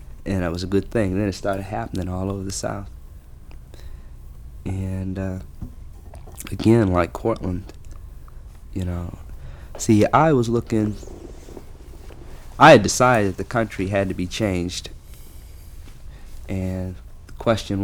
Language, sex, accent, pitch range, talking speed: English, male, American, 85-100 Hz, 130 wpm